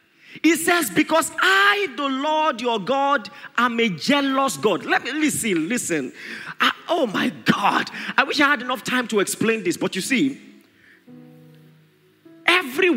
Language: English